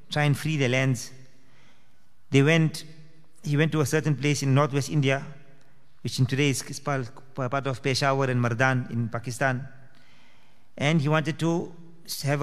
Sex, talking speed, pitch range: male, 155 wpm, 130-150 Hz